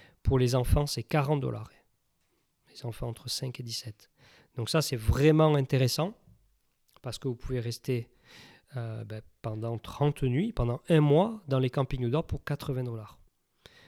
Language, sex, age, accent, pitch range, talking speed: French, male, 40-59, French, 115-150 Hz, 170 wpm